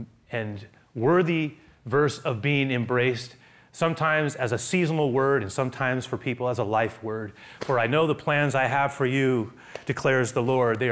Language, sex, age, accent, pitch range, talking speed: English, male, 30-49, American, 110-145 Hz, 175 wpm